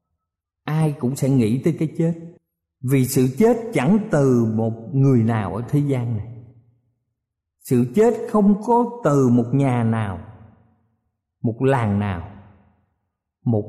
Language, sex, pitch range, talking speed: Vietnamese, male, 110-170 Hz, 135 wpm